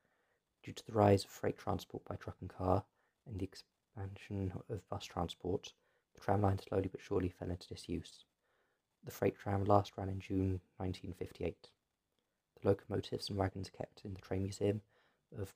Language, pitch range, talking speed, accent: English, 90-100 Hz, 175 wpm, British